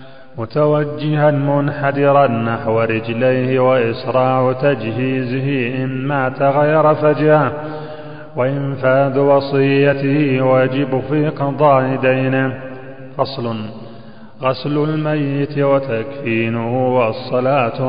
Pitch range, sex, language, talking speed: 130-140 Hz, male, Arabic, 70 wpm